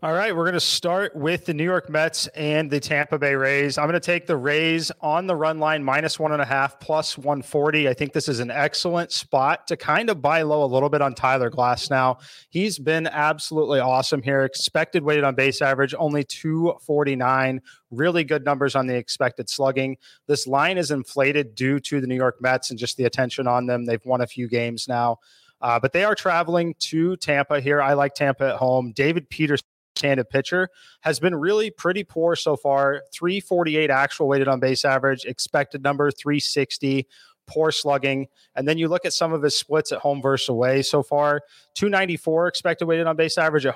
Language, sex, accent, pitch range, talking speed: English, male, American, 135-160 Hz, 205 wpm